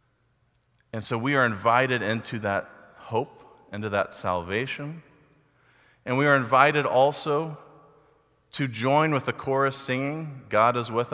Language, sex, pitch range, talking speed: English, male, 110-135 Hz, 135 wpm